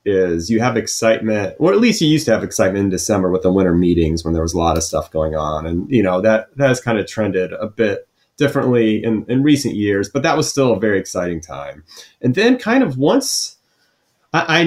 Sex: male